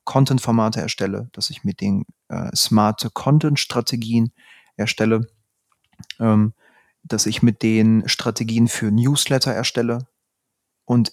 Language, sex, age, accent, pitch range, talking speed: German, male, 30-49, German, 110-135 Hz, 110 wpm